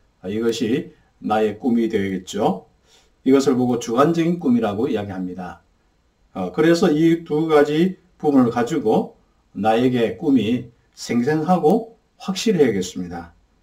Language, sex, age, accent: Korean, male, 50-69, native